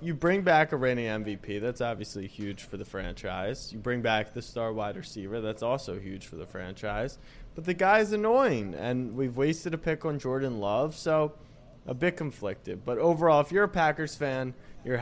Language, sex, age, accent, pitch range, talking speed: English, male, 20-39, American, 115-150 Hz, 195 wpm